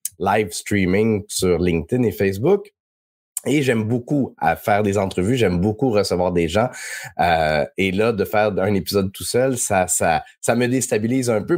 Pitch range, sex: 95-135 Hz, male